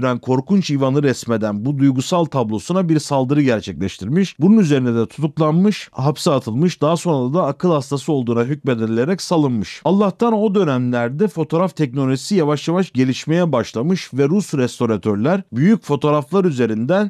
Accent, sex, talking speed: native, male, 135 wpm